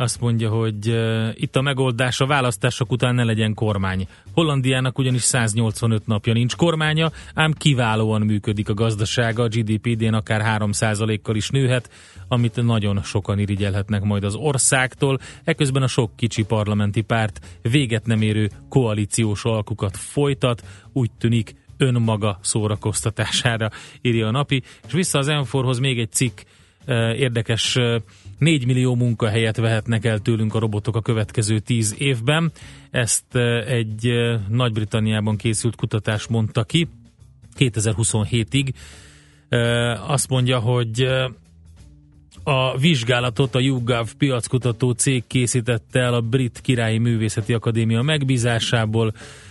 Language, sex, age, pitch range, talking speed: Hungarian, male, 30-49, 110-130 Hz, 120 wpm